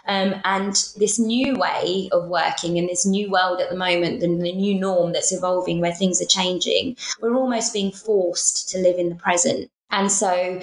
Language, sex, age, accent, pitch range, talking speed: English, female, 20-39, British, 175-215 Hz, 190 wpm